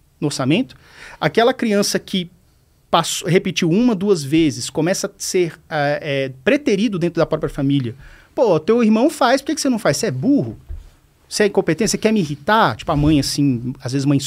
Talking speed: 195 wpm